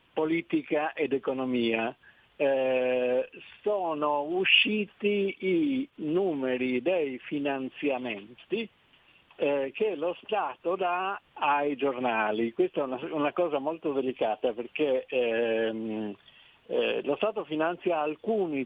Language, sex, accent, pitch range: Italian, male, native, 130-175 Hz